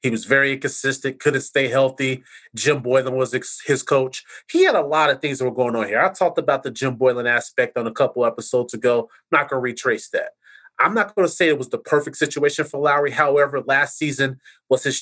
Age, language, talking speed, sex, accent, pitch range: 30-49, English, 230 wpm, male, American, 130-150 Hz